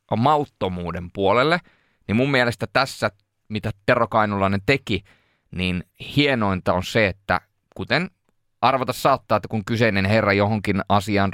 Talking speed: 125 wpm